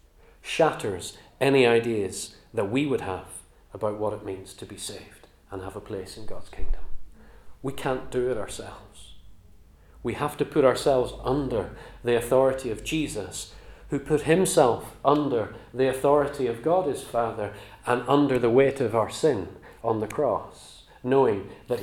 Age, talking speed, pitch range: 40-59, 160 wpm, 90-140 Hz